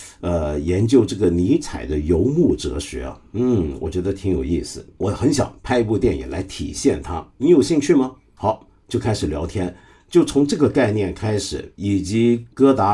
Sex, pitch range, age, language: male, 90-120 Hz, 50-69, Chinese